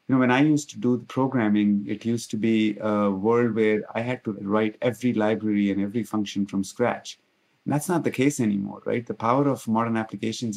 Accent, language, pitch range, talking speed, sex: Indian, English, 105-125 Hz, 215 wpm, male